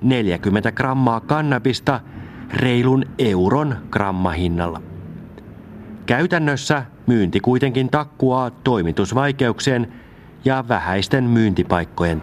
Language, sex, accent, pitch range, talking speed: Finnish, male, native, 100-130 Hz, 70 wpm